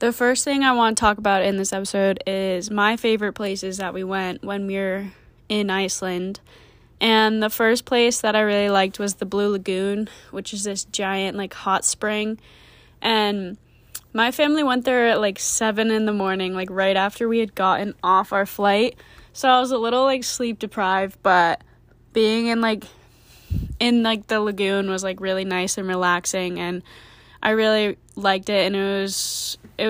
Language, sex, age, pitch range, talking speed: English, female, 10-29, 190-220 Hz, 185 wpm